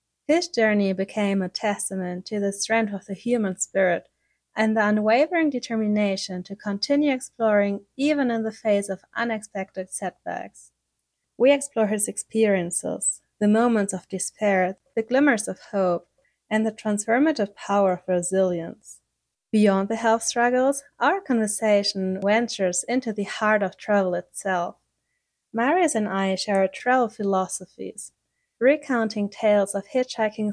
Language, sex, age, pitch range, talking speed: English, female, 30-49, 190-235 Hz, 130 wpm